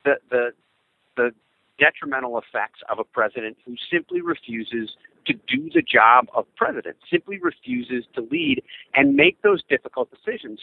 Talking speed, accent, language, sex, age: 145 wpm, American, English, male, 50-69